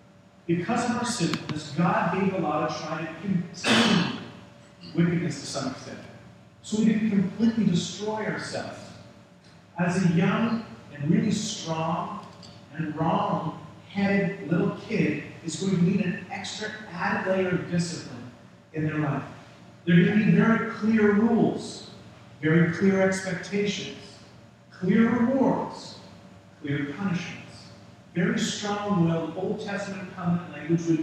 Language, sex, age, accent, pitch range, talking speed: English, male, 40-59, American, 165-205 Hz, 130 wpm